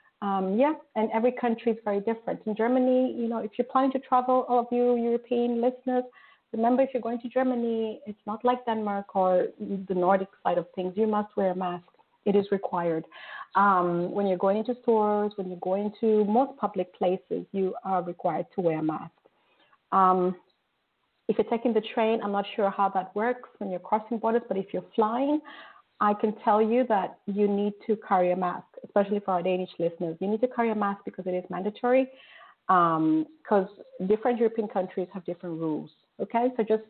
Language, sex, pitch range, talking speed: English, female, 185-235 Hz, 200 wpm